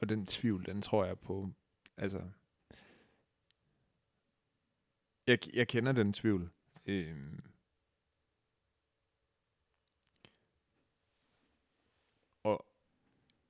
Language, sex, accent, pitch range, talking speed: Danish, male, native, 95-110 Hz, 60 wpm